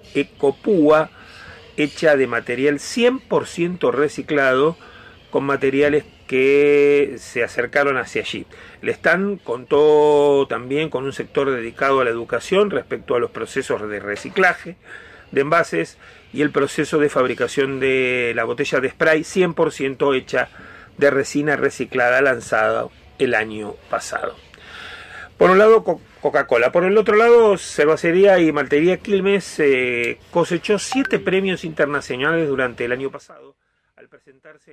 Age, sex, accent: 40-59, male, Argentinian